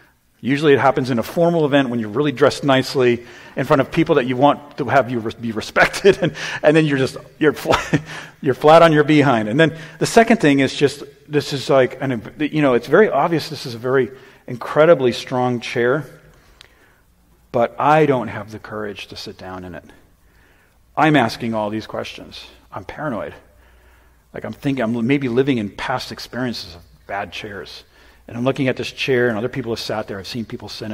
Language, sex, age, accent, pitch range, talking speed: English, male, 40-59, American, 100-135 Hz, 200 wpm